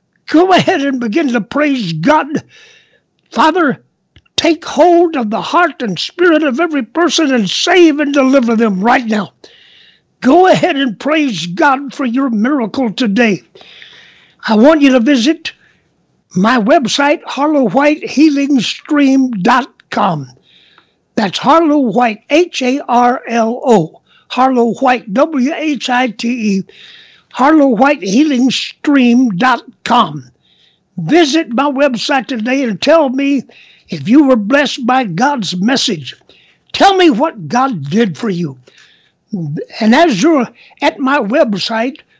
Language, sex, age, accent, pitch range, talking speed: English, male, 60-79, American, 225-300 Hz, 110 wpm